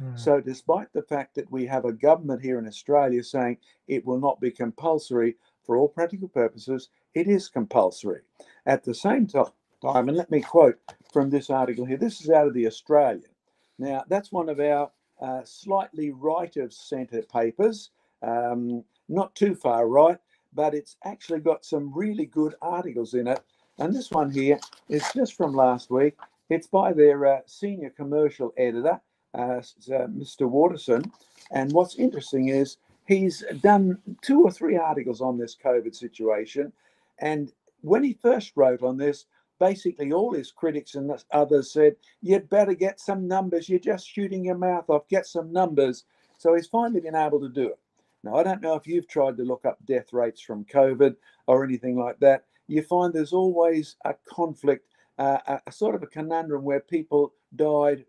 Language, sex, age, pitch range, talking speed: English, male, 50-69, 130-180 Hz, 180 wpm